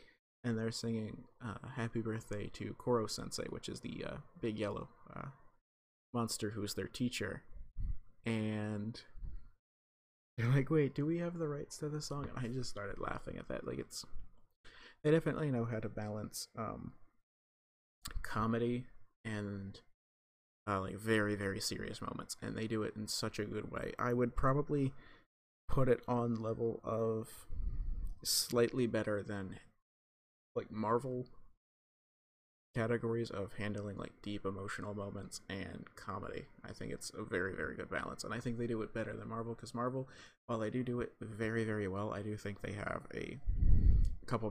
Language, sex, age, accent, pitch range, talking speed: English, male, 30-49, American, 100-125 Hz, 160 wpm